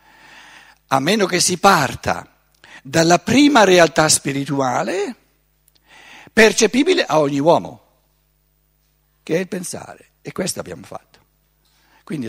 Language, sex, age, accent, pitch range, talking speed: Italian, male, 60-79, native, 135-180 Hz, 105 wpm